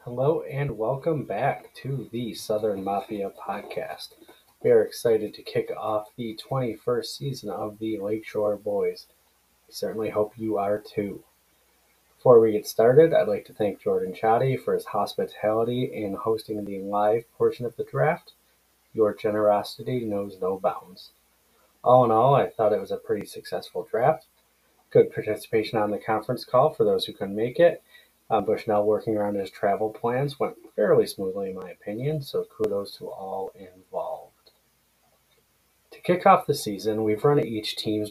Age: 30-49